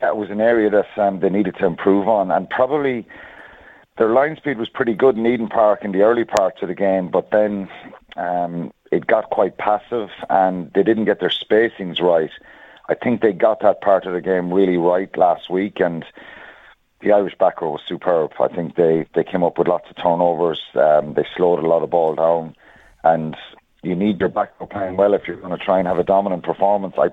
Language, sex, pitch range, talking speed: English, male, 90-105 Hz, 220 wpm